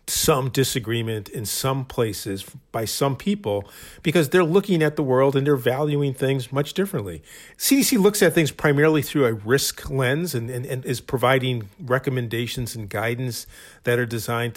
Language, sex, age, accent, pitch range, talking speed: English, male, 50-69, American, 115-150 Hz, 165 wpm